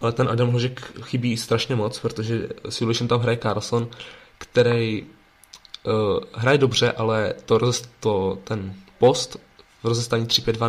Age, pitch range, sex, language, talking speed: 20-39, 105-120 Hz, male, Czech, 140 wpm